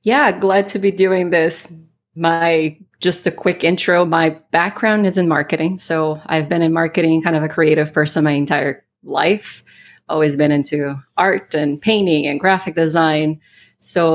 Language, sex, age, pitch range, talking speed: English, female, 20-39, 155-180 Hz, 165 wpm